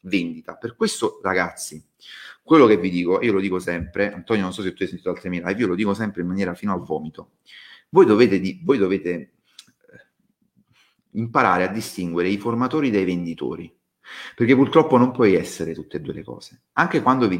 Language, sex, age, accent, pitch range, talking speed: Italian, male, 30-49, native, 90-115 Hz, 190 wpm